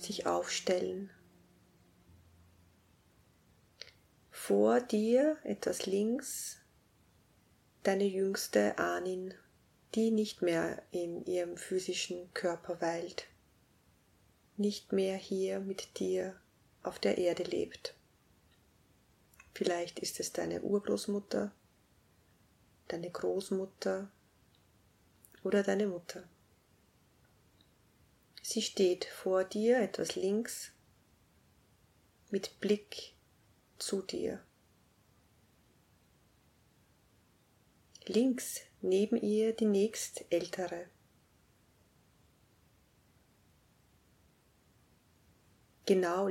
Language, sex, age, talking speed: German, female, 30-49, 65 wpm